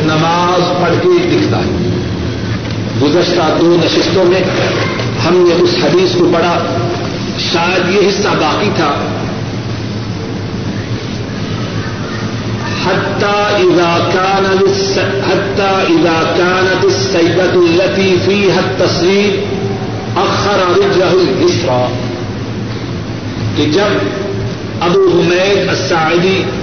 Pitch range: 115-185 Hz